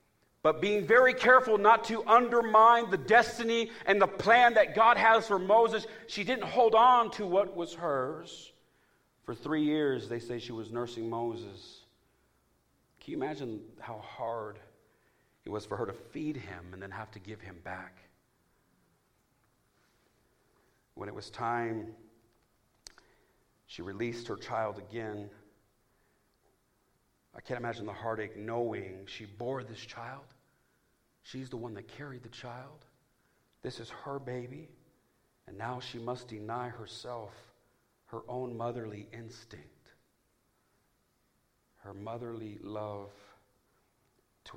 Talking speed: 130 wpm